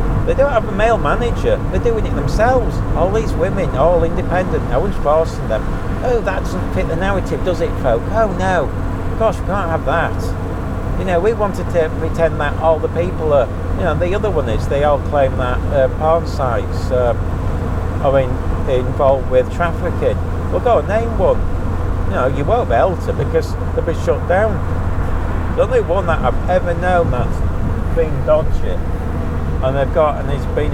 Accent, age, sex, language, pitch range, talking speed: British, 50-69, male, English, 85-105 Hz, 190 wpm